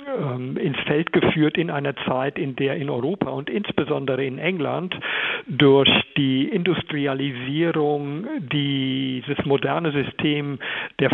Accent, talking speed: German, 115 wpm